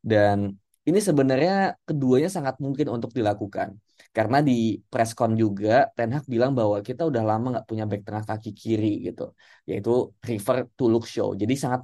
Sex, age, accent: male, 20-39, native